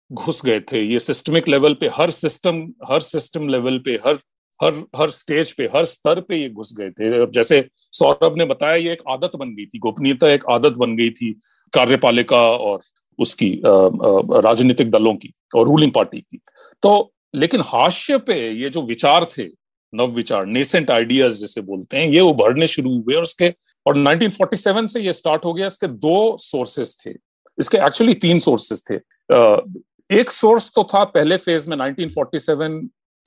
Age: 40-59